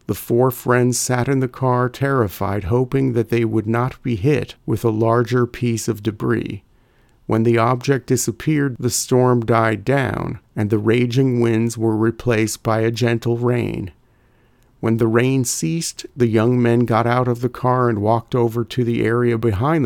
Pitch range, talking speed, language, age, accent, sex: 115-125 Hz, 175 wpm, English, 50-69, American, male